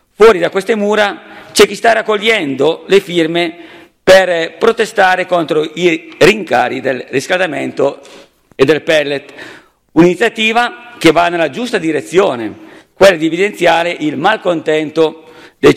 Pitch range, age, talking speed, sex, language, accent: 155-195 Hz, 50-69, 120 wpm, male, Italian, native